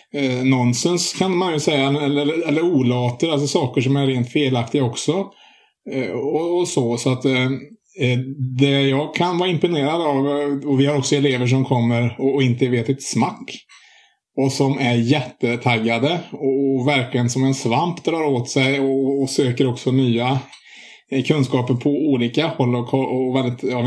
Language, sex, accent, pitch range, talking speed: Swedish, male, Norwegian, 120-140 Hz, 165 wpm